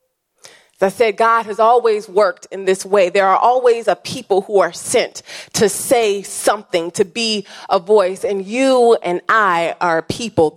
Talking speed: 170 wpm